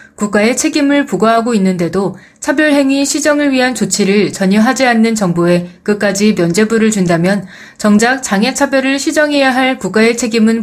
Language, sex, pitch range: Korean, female, 185-240 Hz